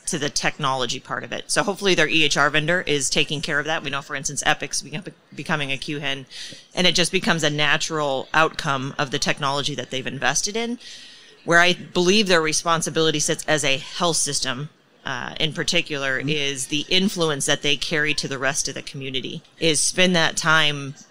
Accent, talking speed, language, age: American, 190 wpm, English, 30-49